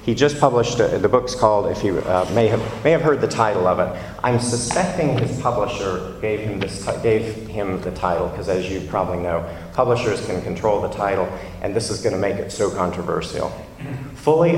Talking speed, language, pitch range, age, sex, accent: 200 wpm, English, 95-125 Hz, 40-59, male, American